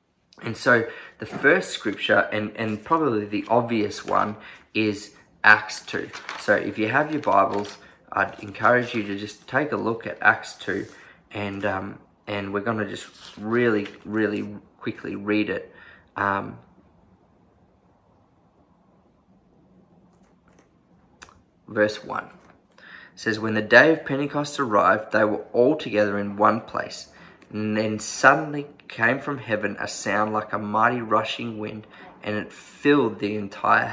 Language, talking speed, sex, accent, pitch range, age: English, 140 wpm, male, Australian, 105-115 Hz, 20-39